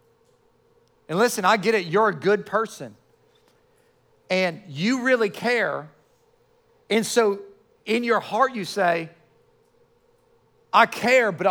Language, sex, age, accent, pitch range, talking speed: English, male, 40-59, American, 205-260 Hz, 120 wpm